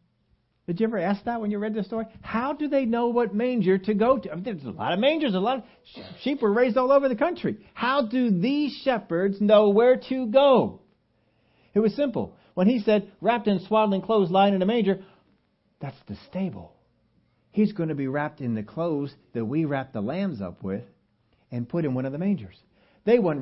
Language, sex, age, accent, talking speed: English, male, 60-79, American, 215 wpm